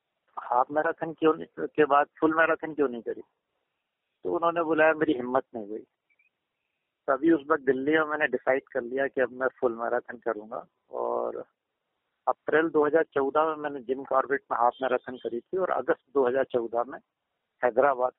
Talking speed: 160 wpm